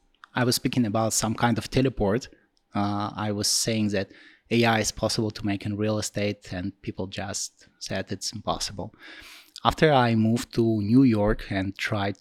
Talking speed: 170 wpm